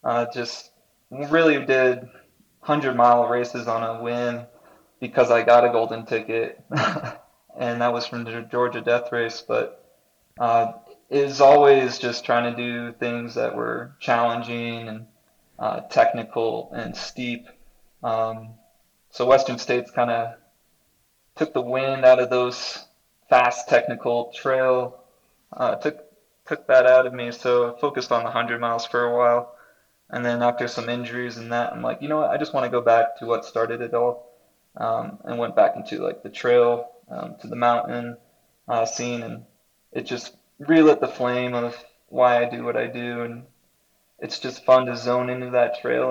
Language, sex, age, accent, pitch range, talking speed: English, male, 20-39, American, 120-125 Hz, 170 wpm